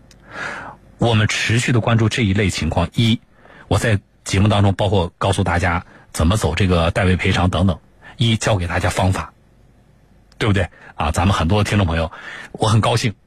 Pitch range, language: 95-135 Hz, Chinese